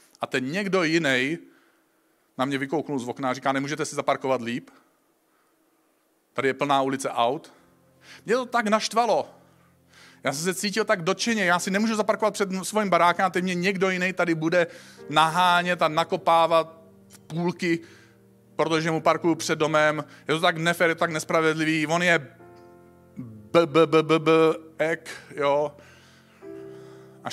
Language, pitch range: Czech, 120-165 Hz